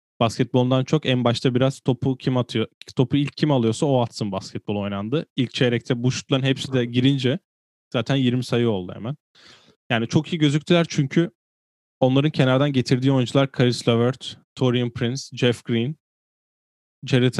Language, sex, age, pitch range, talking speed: Turkish, male, 10-29, 110-130 Hz, 150 wpm